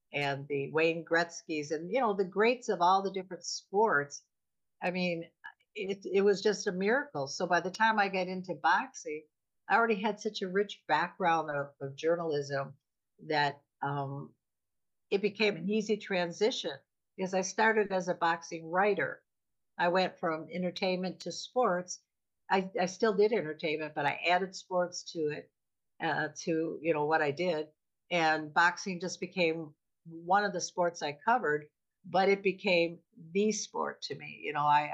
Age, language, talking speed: 60-79, English, 170 wpm